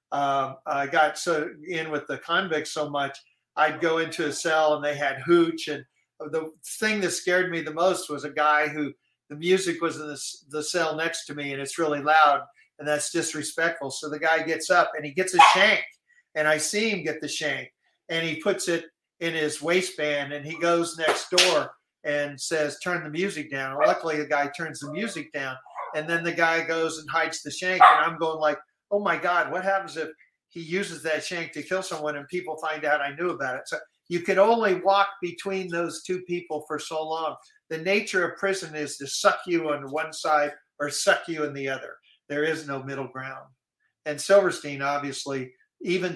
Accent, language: American, English